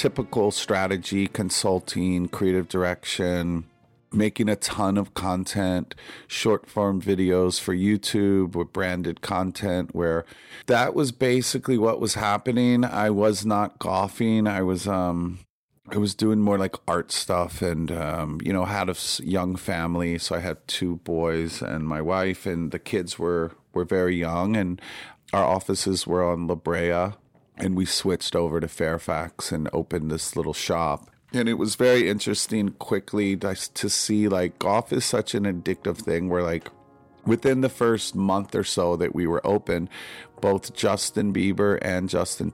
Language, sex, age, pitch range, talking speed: English, male, 40-59, 85-105 Hz, 160 wpm